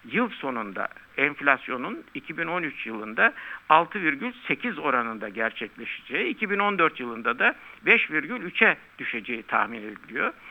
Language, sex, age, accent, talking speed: Turkish, male, 60-79, native, 85 wpm